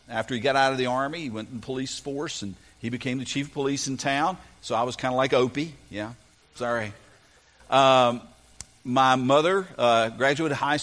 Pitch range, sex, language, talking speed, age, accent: 110-135 Hz, male, English, 200 wpm, 50-69, American